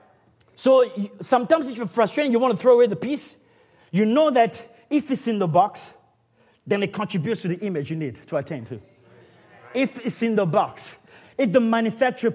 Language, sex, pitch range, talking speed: English, male, 220-325 Hz, 190 wpm